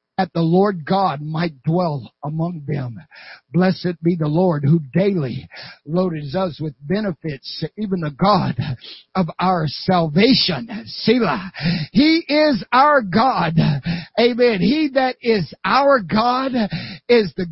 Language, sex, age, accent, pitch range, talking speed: English, male, 60-79, American, 180-260 Hz, 125 wpm